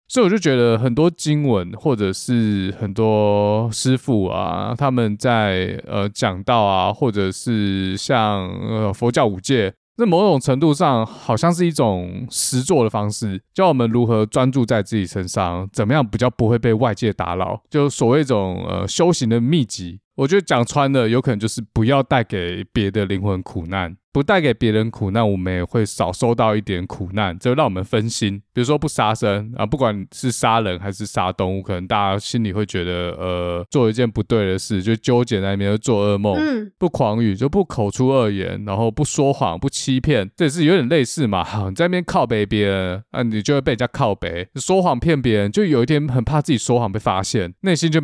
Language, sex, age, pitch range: Chinese, male, 20-39, 100-135 Hz